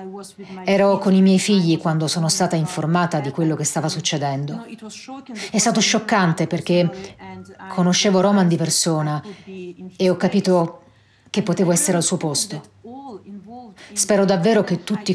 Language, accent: Italian, native